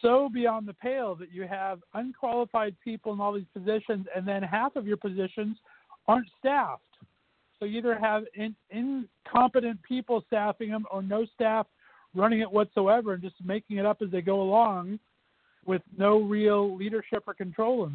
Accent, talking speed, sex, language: American, 170 wpm, male, English